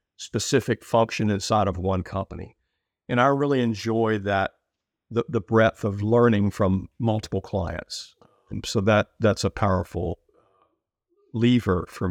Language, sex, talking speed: English, male, 135 wpm